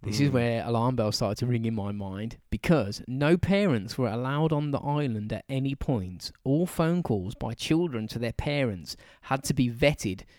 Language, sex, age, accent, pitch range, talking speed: English, male, 20-39, British, 110-145 Hz, 195 wpm